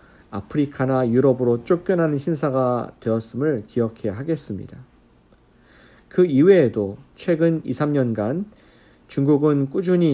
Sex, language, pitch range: male, Korean, 115-150 Hz